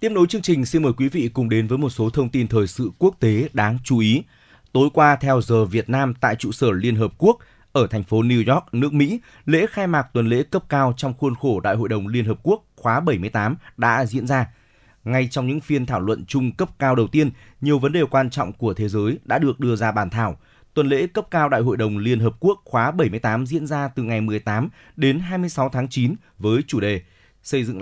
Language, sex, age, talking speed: Vietnamese, male, 20-39, 245 wpm